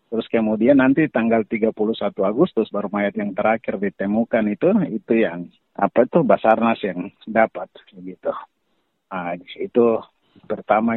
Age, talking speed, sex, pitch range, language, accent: 50-69, 125 wpm, male, 100-115 Hz, English, Indonesian